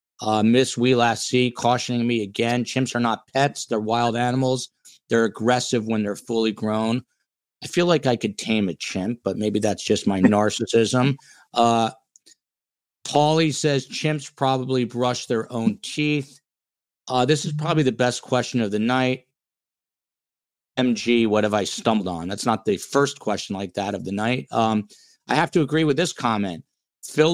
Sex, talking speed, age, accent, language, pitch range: male, 170 wpm, 50-69, American, English, 105-135 Hz